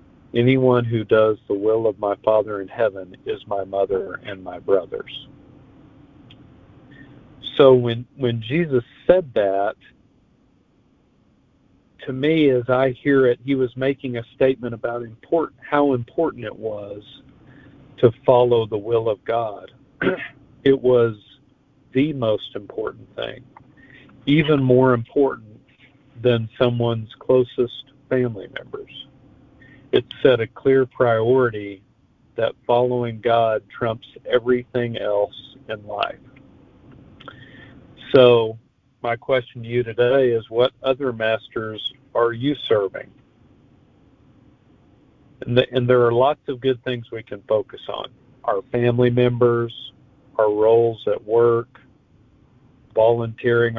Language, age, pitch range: English, 50-69, 115-135 Hz